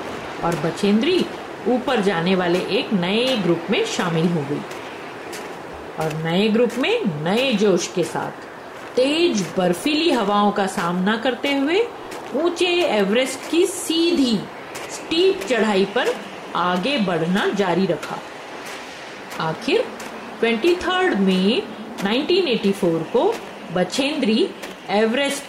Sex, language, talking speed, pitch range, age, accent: female, Hindi, 105 wpm, 185-255 Hz, 40-59, native